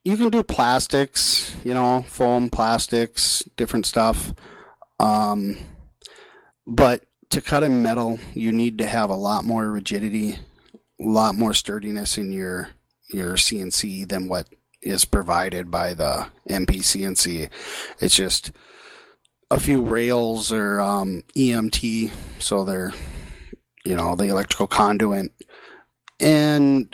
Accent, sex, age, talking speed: American, male, 30-49, 120 wpm